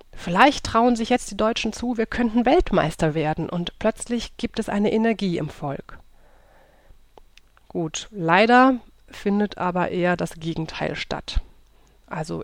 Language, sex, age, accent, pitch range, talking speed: German, female, 30-49, German, 165-210 Hz, 135 wpm